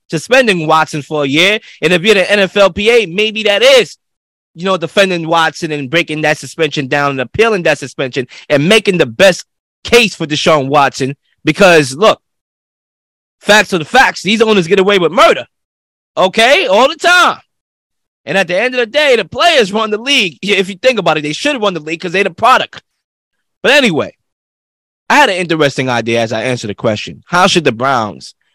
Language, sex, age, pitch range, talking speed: English, male, 20-39, 130-190 Hz, 195 wpm